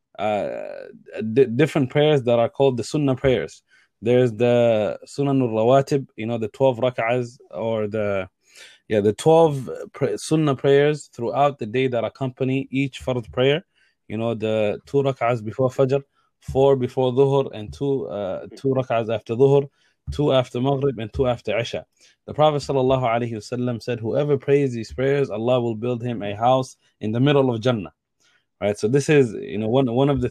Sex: male